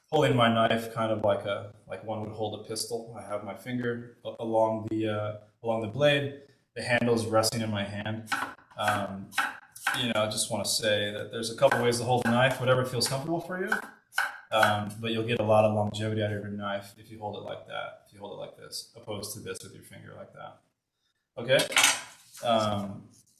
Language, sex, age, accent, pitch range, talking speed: English, male, 20-39, American, 110-125 Hz, 220 wpm